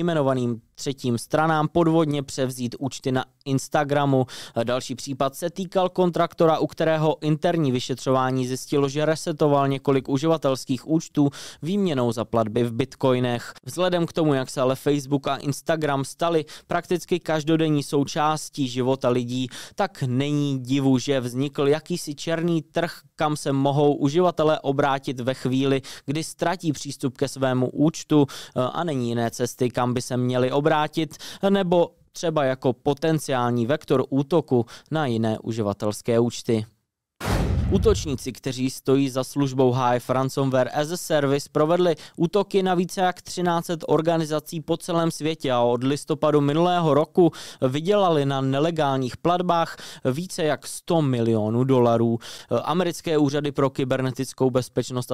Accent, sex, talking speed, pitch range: native, male, 135 wpm, 125-155 Hz